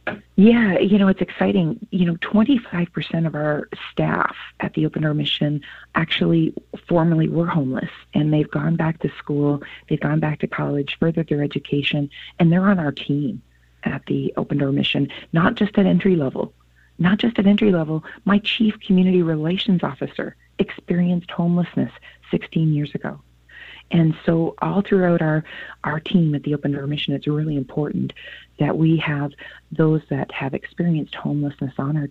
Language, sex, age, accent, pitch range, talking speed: English, female, 40-59, American, 145-190 Hz, 165 wpm